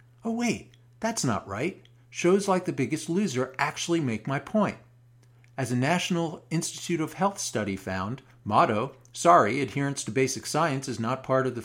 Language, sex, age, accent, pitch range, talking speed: English, male, 50-69, American, 120-170 Hz, 170 wpm